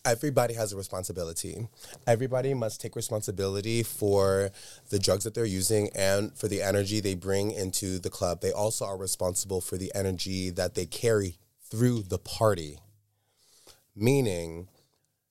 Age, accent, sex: 20-39, American, male